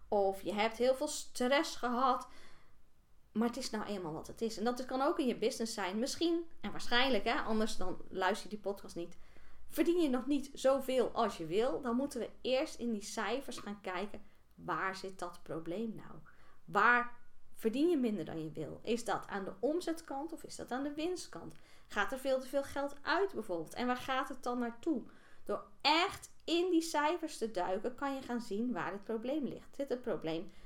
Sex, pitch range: female, 195-280 Hz